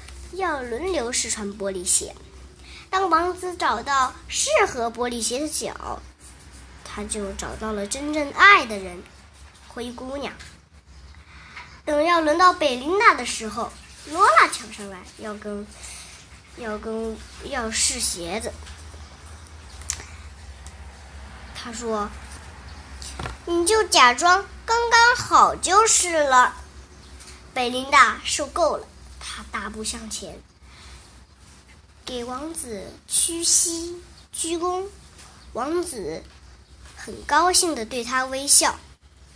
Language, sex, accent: Chinese, male, native